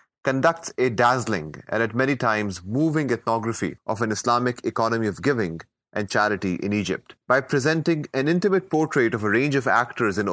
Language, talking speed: English, 175 wpm